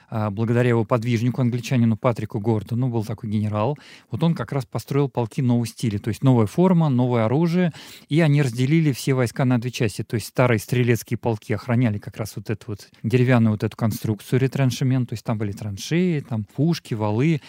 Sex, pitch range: male, 115-135 Hz